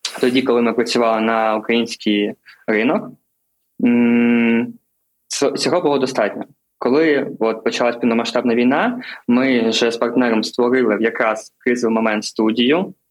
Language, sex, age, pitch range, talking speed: Ukrainian, male, 20-39, 115-125 Hz, 110 wpm